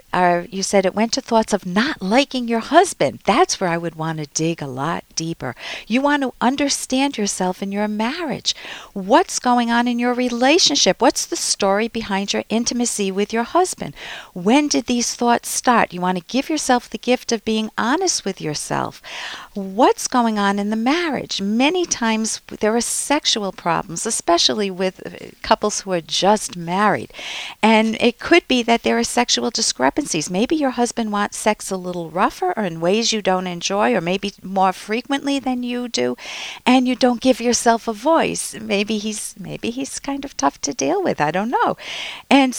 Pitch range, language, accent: 195-255 Hz, English, American